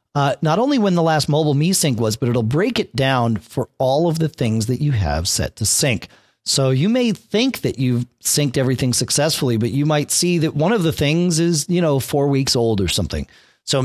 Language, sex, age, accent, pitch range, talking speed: English, male, 40-59, American, 110-155 Hz, 230 wpm